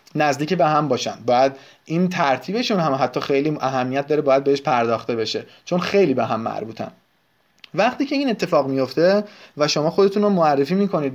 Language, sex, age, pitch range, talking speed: Persian, male, 30-49, 135-180 Hz, 170 wpm